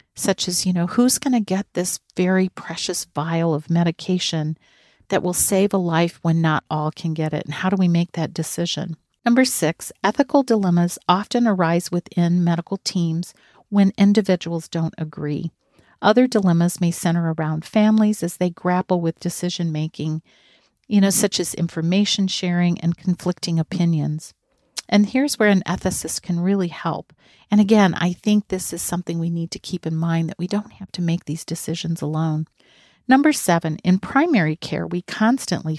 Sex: female